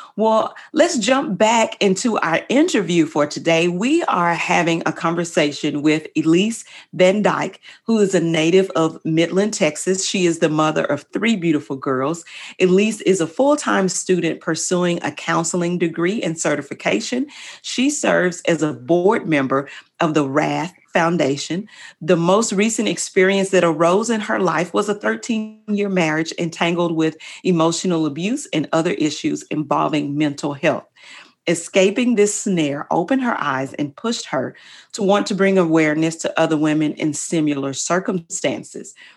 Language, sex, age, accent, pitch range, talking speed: English, female, 40-59, American, 160-205 Hz, 150 wpm